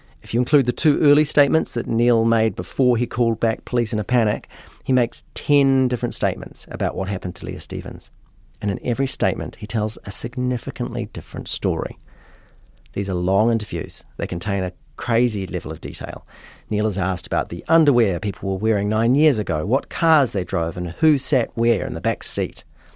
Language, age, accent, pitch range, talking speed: English, 40-59, Australian, 100-130 Hz, 195 wpm